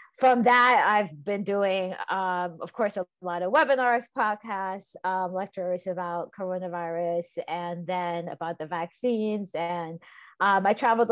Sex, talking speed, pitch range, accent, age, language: female, 140 wpm, 175-200 Hz, American, 20-39, English